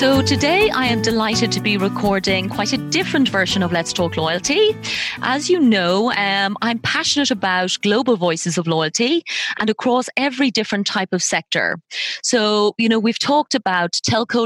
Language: English